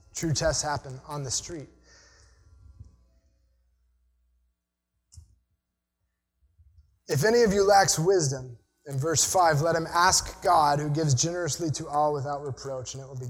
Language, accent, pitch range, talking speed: English, American, 130-220 Hz, 135 wpm